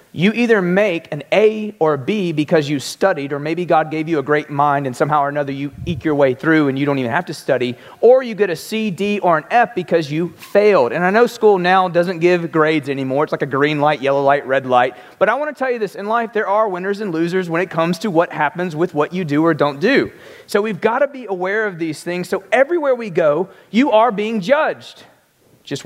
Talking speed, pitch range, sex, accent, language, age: 255 wpm, 160-220 Hz, male, American, English, 30-49